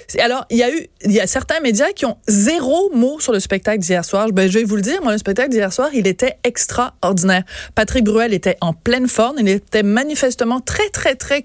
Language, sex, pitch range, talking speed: French, female, 195-240 Hz, 235 wpm